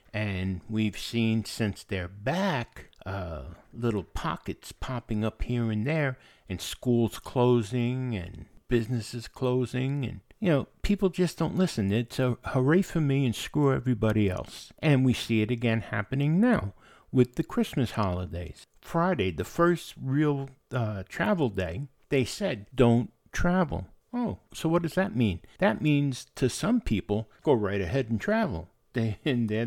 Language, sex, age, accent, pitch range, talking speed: English, male, 60-79, American, 110-170 Hz, 155 wpm